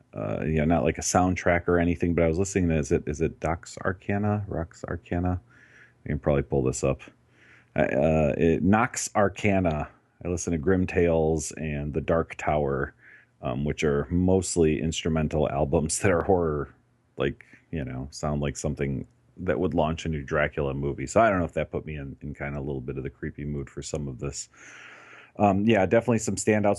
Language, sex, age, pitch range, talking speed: English, male, 40-59, 75-100 Hz, 210 wpm